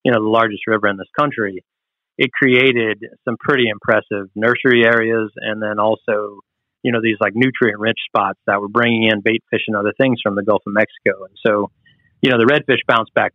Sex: male